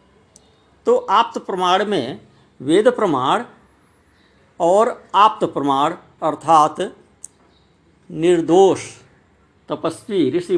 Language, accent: Hindi, native